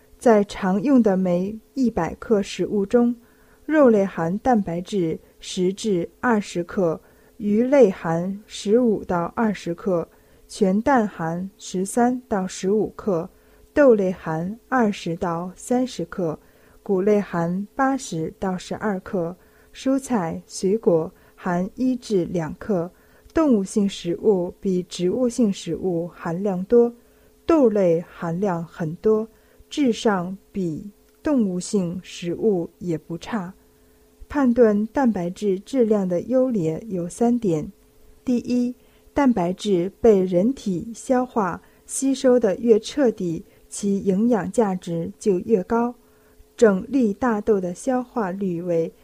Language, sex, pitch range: Chinese, female, 180-240 Hz